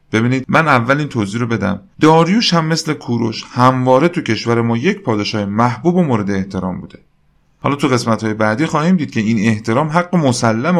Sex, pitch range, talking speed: male, 110-155 Hz, 190 wpm